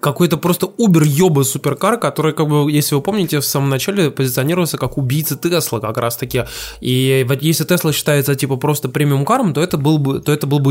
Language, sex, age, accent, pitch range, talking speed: Russian, male, 20-39, native, 130-160 Hz, 190 wpm